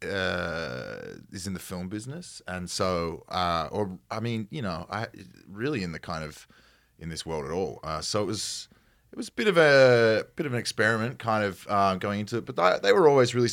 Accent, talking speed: Australian, 225 wpm